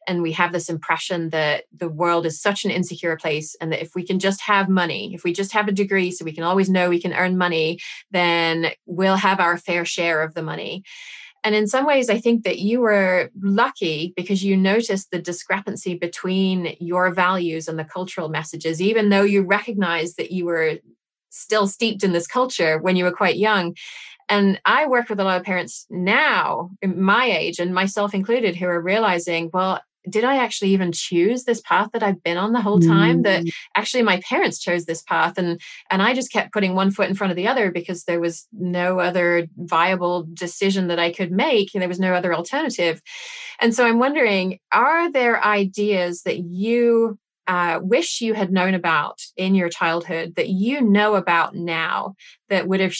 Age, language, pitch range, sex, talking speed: 30-49, English, 175-205 Hz, female, 205 wpm